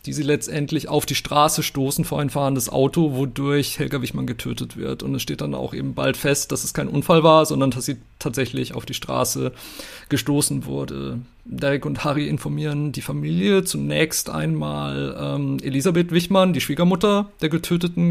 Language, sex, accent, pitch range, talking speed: German, male, German, 135-170 Hz, 175 wpm